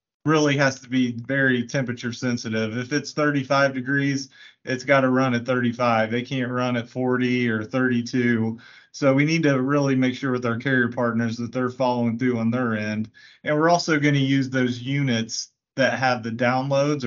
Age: 30-49